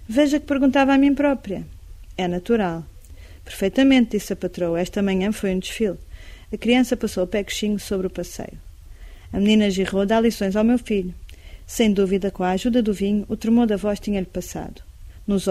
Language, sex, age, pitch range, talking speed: Portuguese, female, 40-59, 180-225 Hz, 185 wpm